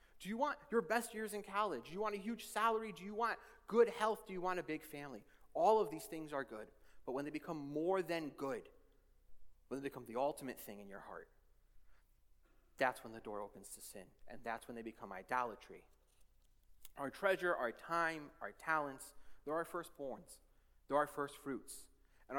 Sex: male